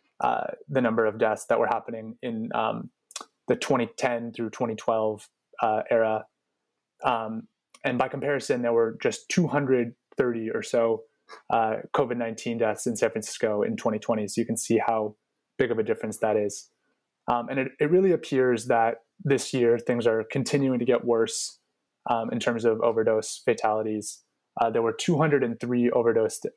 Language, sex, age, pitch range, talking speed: English, male, 20-39, 115-135 Hz, 160 wpm